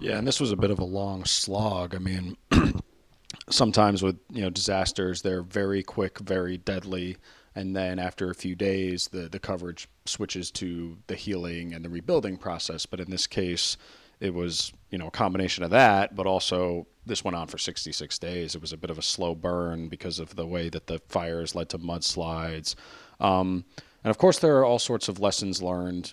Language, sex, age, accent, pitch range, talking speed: English, male, 30-49, American, 90-100 Hz, 205 wpm